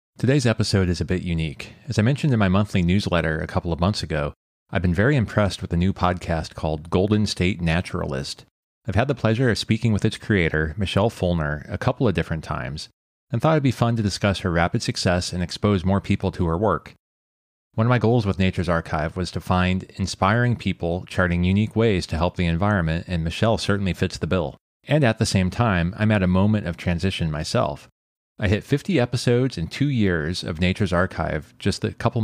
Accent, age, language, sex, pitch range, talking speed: American, 30-49, English, male, 85-110 Hz, 210 wpm